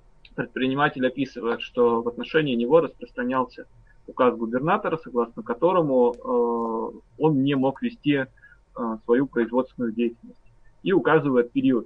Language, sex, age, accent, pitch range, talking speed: Russian, male, 20-39, native, 120-160 Hz, 105 wpm